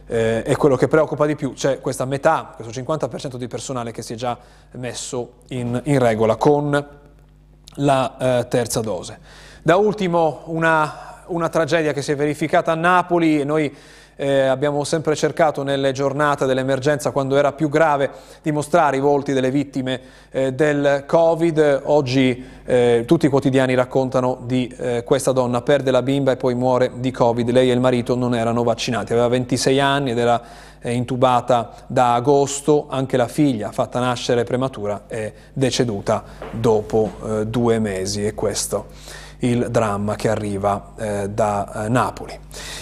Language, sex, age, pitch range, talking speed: Italian, male, 30-49, 125-150 Hz, 165 wpm